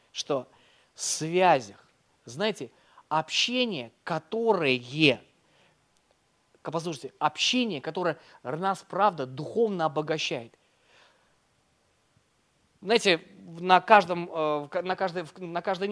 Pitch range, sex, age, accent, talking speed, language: 150-210 Hz, male, 30-49, native, 55 wpm, Russian